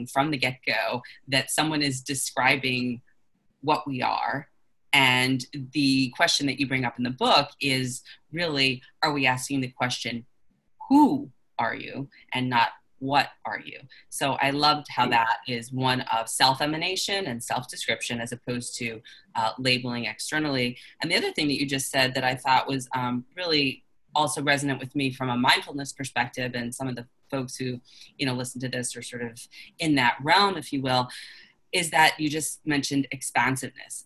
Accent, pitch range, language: American, 125-145 Hz, English